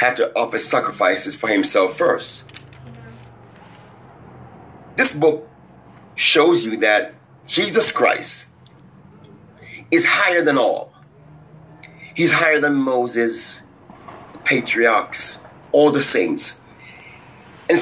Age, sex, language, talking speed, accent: 30-49, male, English, 95 wpm, American